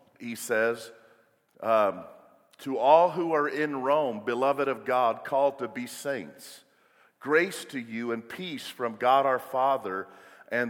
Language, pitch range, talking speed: English, 130-165 Hz, 145 wpm